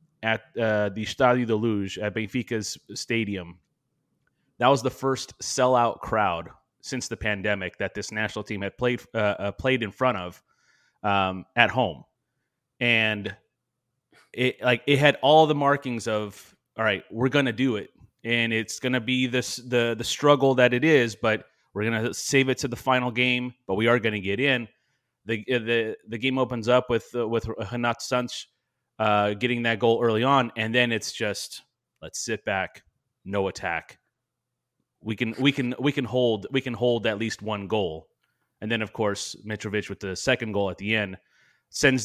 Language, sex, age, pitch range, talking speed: English, male, 30-49, 105-125 Hz, 180 wpm